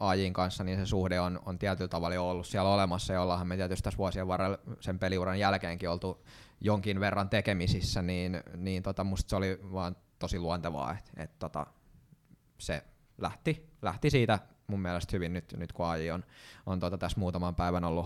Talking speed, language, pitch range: 180 wpm, Finnish, 90-105 Hz